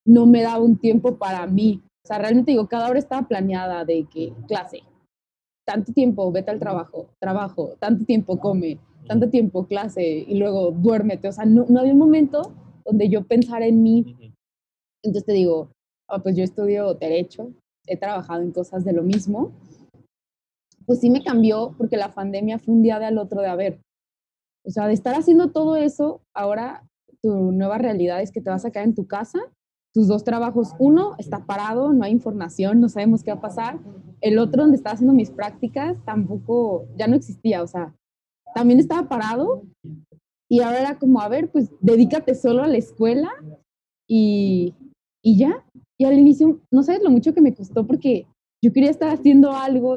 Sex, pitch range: female, 195-255 Hz